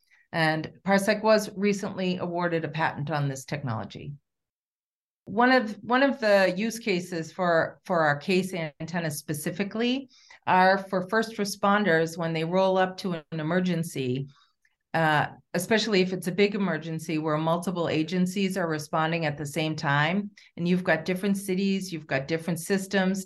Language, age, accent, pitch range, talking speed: English, 40-59, American, 150-185 Hz, 150 wpm